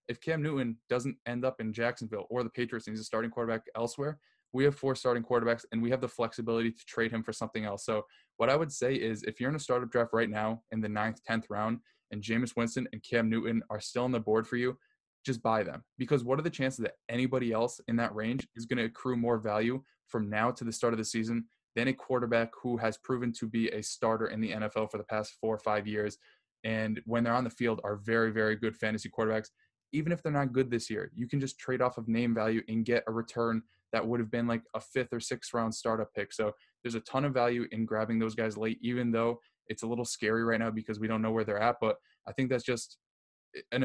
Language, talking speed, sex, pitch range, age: English, 255 wpm, male, 110-120 Hz, 10-29